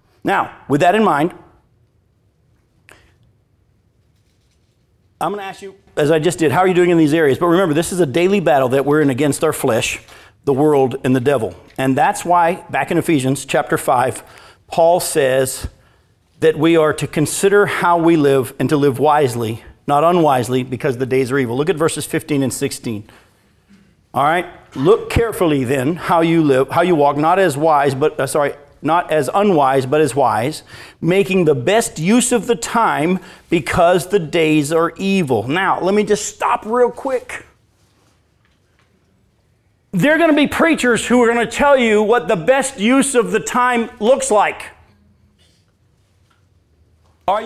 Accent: American